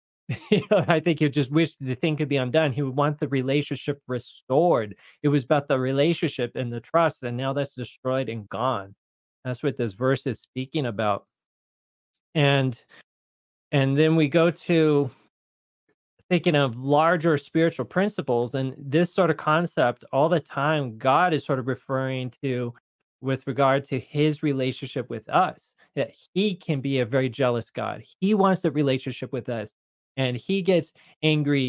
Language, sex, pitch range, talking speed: English, male, 130-155 Hz, 165 wpm